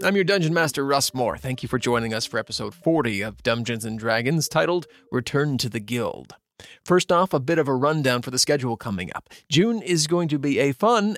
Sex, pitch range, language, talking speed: male, 125-175 Hz, English, 225 wpm